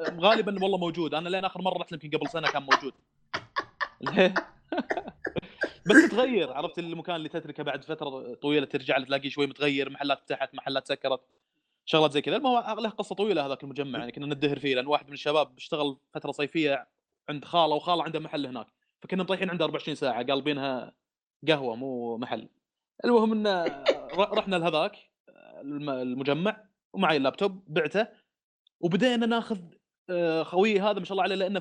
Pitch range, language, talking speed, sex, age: 145-185 Hz, Arabic, 155 wpm, male, 20-39